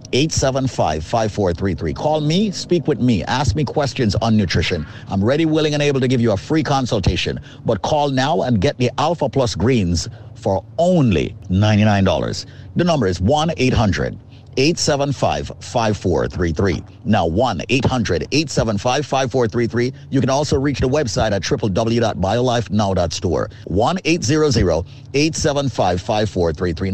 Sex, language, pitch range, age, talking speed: male, English, 105-150 Hz, 50-69, 125 wpm